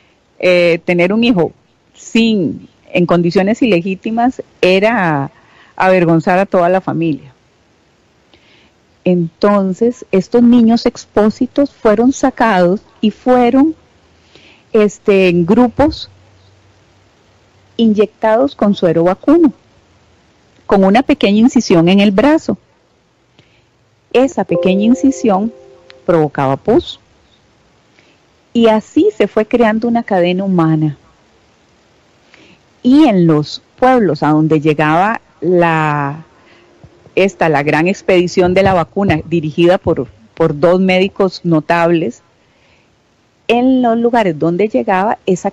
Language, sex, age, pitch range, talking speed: Spanish, female, 40-59, 165-230 Hz, 100 wpm